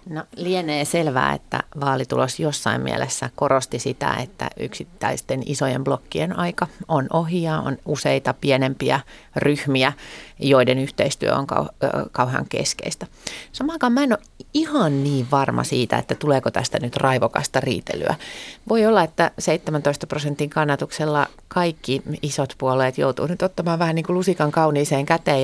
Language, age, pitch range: Finnish, 30-49, 135-165 Hz